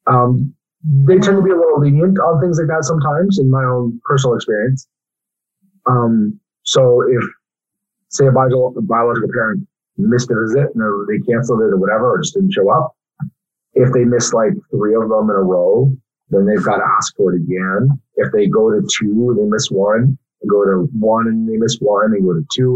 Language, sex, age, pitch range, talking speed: English, male, 40-59, 115-160 Hz, 205 wpm